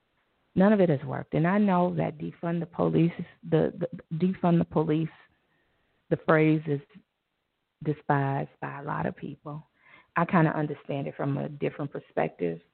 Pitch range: 145-175 Hz